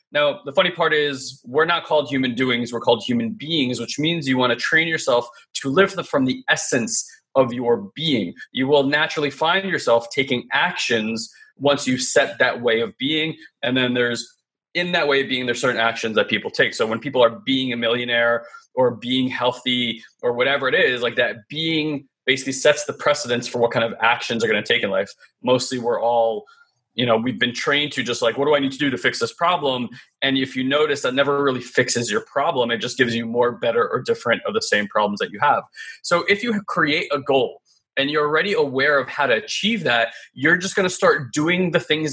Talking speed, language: 225 wpm, English